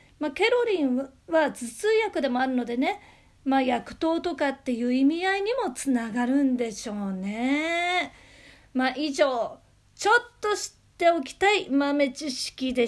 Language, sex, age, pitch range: Japanese, female, 40-59, 230-300 Hz